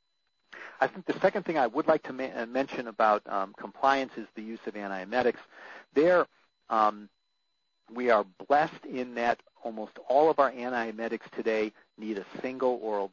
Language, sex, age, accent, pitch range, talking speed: English, male, 50-69, American, 105-125 Hz, 165 wpm